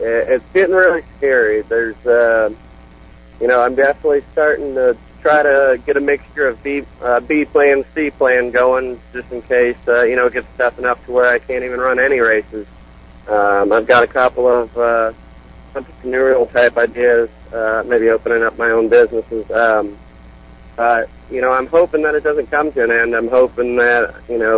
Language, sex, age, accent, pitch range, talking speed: English, male, 40-59, American, 110-135 Hz, 190 wpm